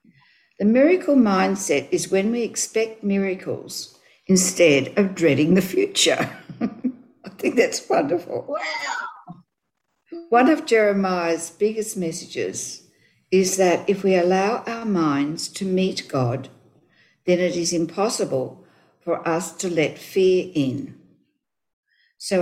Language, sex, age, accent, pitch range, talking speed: English, female, 60-79, Australian, 165-230 Hz, 115 wpm